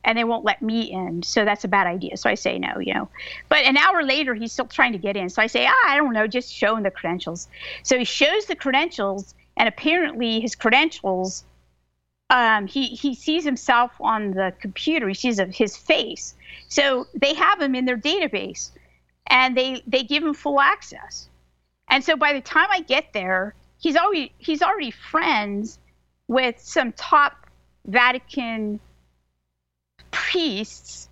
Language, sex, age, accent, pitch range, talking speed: English, female, 50-69, American, 195-265 Hz, 175 wpm